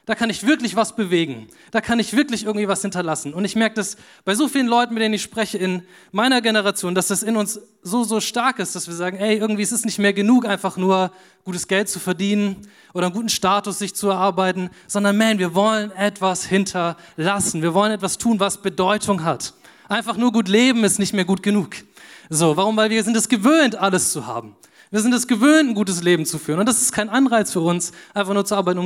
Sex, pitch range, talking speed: male, 180-215 Hz, 235 wpm